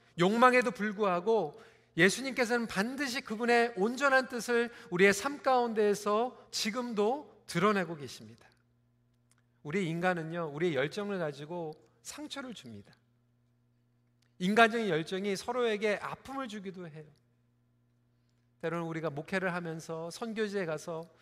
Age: 40-59